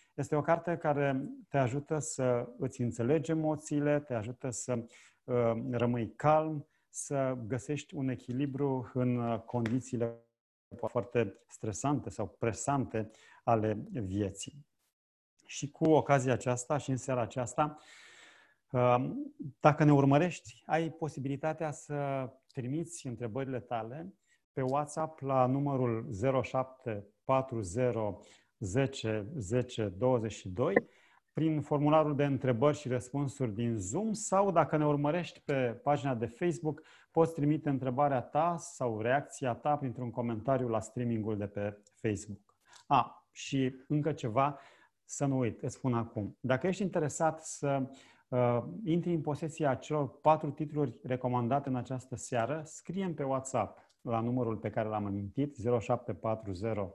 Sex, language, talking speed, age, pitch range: male, Romanian, 125 wpm, 40-59, 120-150 Hz